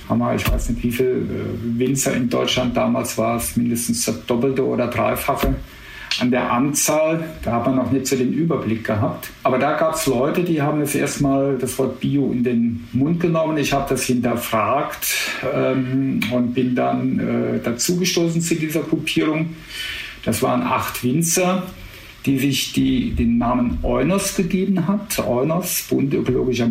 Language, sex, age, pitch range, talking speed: German, male, 50-69, 115-150 Hz, 170 wpm